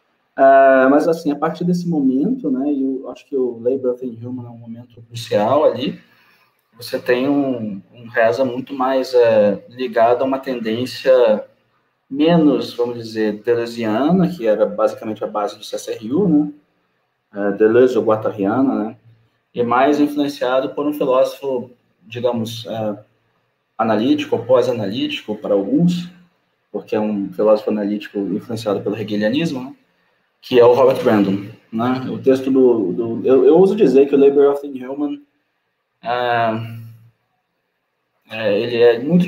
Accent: Brazilian